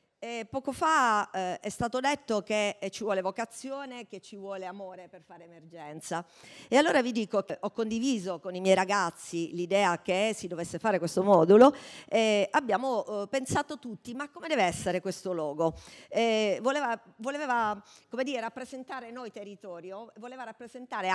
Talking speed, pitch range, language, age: 160 wpm, 175-240 Hz, Italian, 50-69